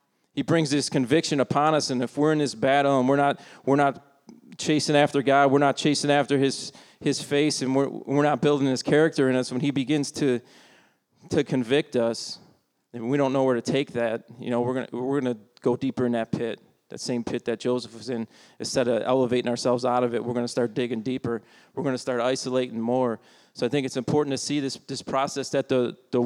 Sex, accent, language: male, American, English